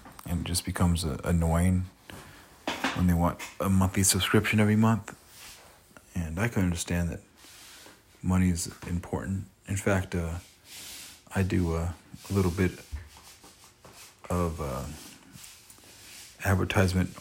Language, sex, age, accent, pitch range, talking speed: English, male, 40-59, American, 85-95 Hz, 120 wpm